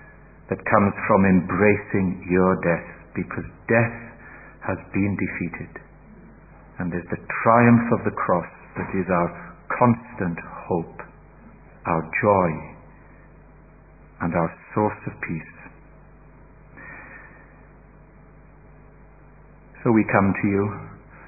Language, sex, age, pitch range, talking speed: English, male, 60-79, 90-115 Hz, 100 wpm